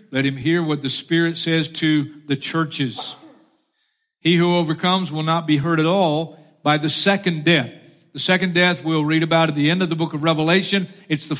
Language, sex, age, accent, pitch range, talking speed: English, male, 50-69, American, 160-205 Hz, 205 wpm